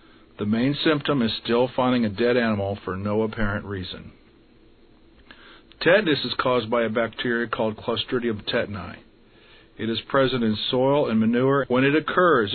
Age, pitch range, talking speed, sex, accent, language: 50-69, 110-130 Hz, 155 wpm, male, American, English